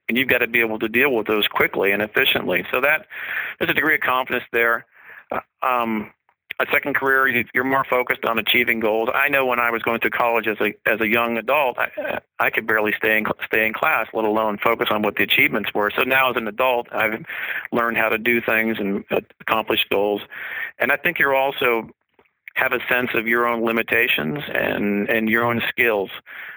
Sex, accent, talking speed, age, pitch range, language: male, American, 205 wpm, 40-59, 110-130 Hz, English